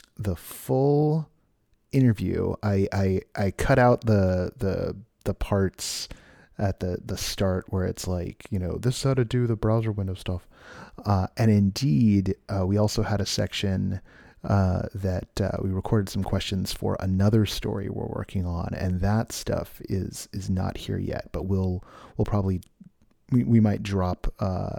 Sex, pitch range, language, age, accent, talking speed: male, 95-110 Hz, English, 30-49, American, 165 wpm